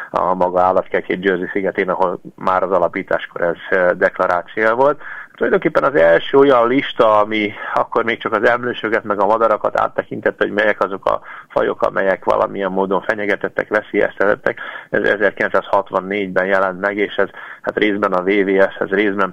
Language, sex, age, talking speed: Hungarian, male, 30-49, 150 wpm